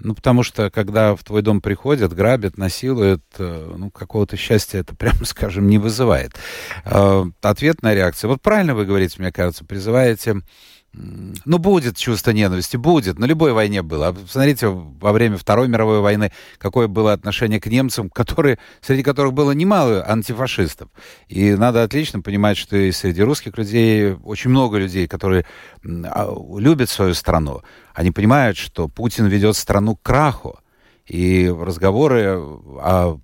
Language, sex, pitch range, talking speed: Russian, male, 95-125 Hz, 145 wpm